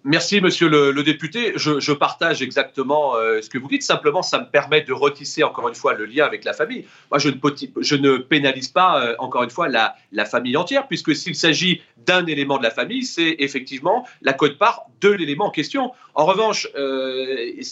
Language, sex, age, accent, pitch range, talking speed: French, male, 40-59, French, 145-210 Hz, 205 wpm